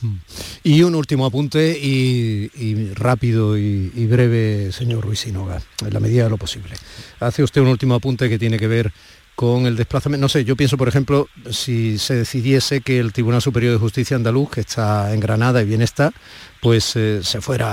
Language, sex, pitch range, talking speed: Spanish, male, 110-135 Hz, 195 wpm